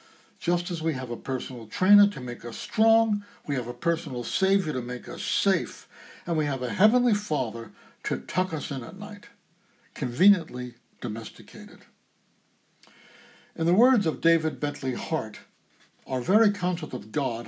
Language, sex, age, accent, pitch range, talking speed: English, male, 60-79, American, 145-210 Hz, 160 wpm